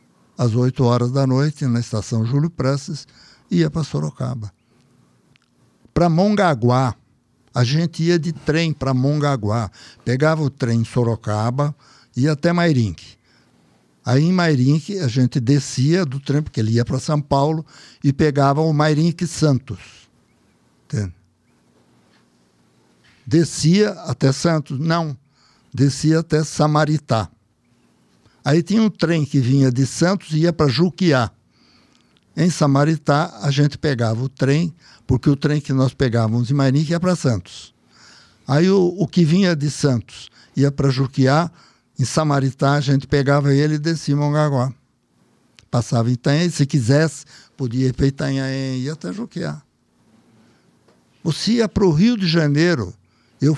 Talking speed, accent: 140 wpm, Brazilian